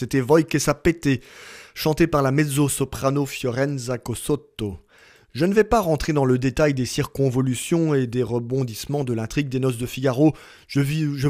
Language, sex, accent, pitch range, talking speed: French, male, French, 130-160 Hz, 165 wpm